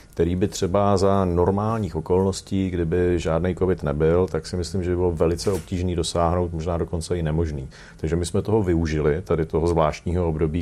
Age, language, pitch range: 40-59, Czech, 80-95 Hz